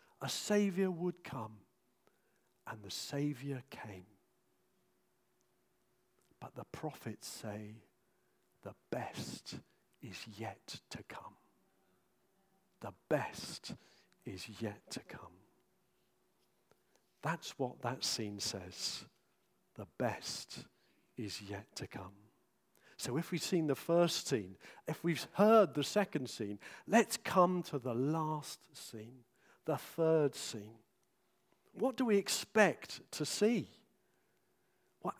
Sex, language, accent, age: male, English, British, 50-69